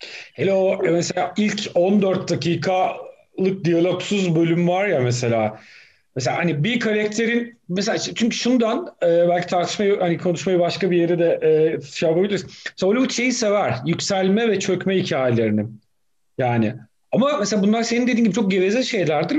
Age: 40-59